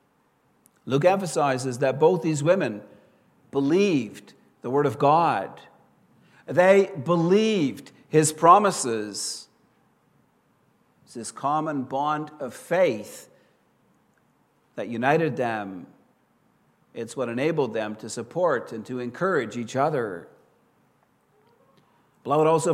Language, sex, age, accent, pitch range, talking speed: English, male, 60-79, American, 130-175 Hz, 100 wpm